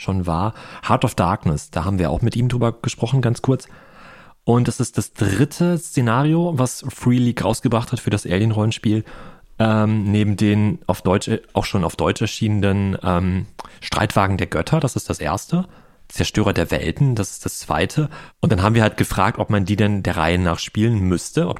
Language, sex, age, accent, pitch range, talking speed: German, male, 30-49, German, 90-110 Hz, 195 wpm